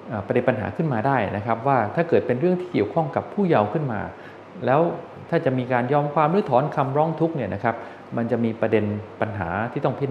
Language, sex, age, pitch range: Thai, male, 20-39, 110-150 Hz